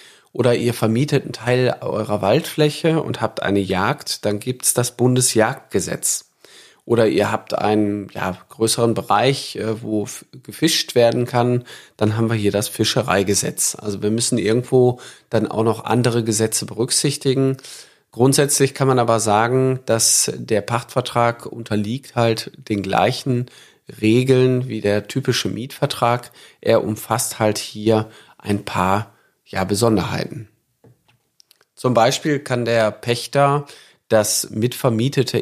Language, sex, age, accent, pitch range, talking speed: German, male, 40-59, German, 110-130 Hz, 125 wpm